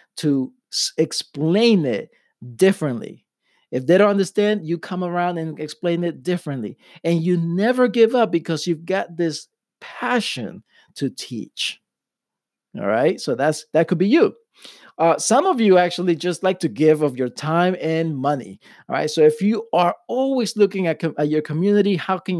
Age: 50-69